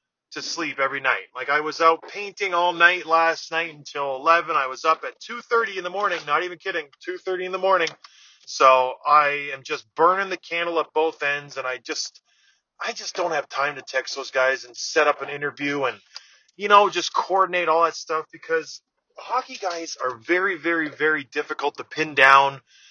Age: 20-39